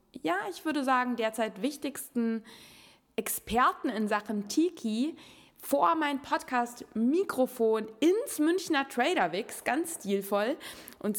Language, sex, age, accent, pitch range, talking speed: German, female, 20-39, German, 210-260 Hz, 100 wpm